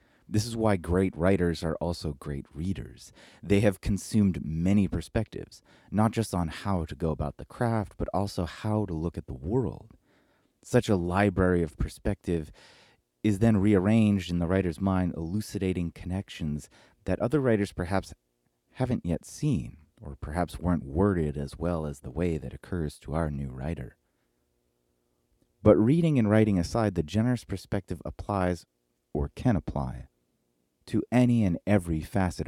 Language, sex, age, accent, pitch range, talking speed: English, male, 30-49, American, 75-100 Hz, 155 wpm